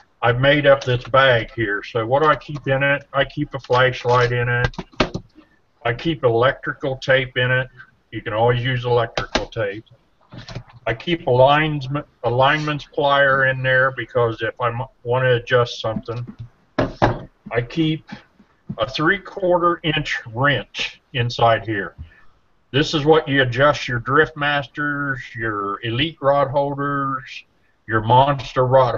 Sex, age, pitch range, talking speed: male, 50-69, 120-145 Hz, 140 wpm